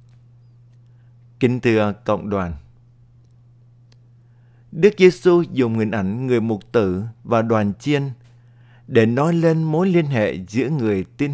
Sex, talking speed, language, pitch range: male, 125 wpm, Vietnamese, 115-135 Hz